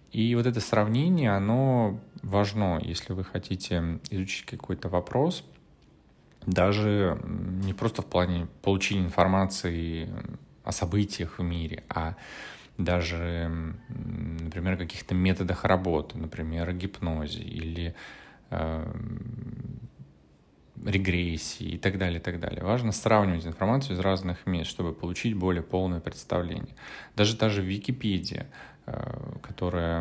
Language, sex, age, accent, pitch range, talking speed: Russian, male, 20-39, native, 90-105 Hz, 115 wpm